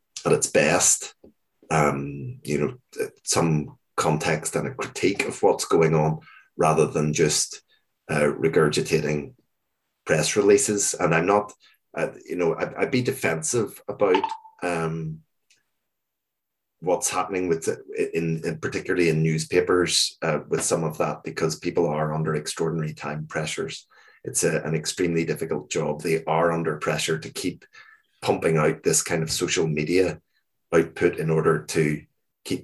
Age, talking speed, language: 30-49, 145 wpm, English